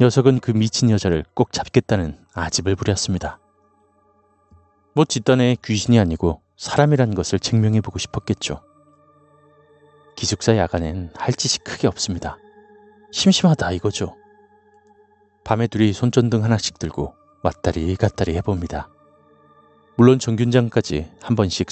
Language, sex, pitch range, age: Korean, male, 95-140 Hz, 30-49